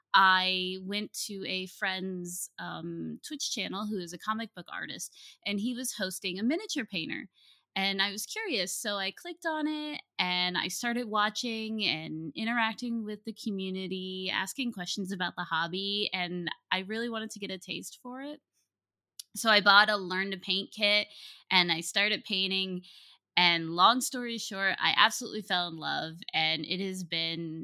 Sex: female